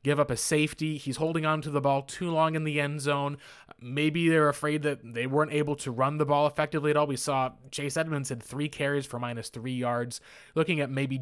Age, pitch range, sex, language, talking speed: 20-39, 130-155 Hz, male, English, 235 wpm